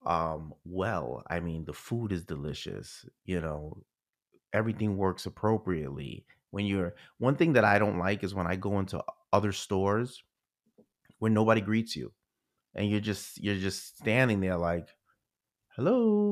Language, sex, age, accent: English, male, 30-49, American